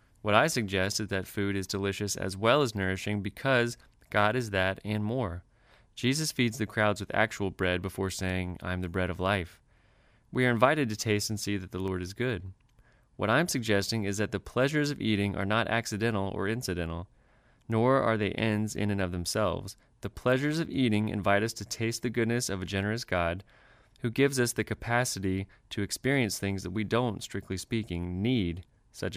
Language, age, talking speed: English, 20-39, 200 wpm